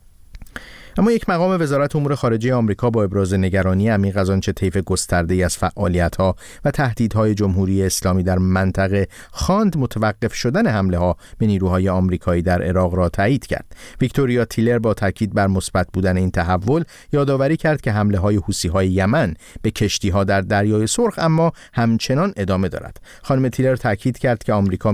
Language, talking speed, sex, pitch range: Persian, 155 wpm, male, 95-115 Hz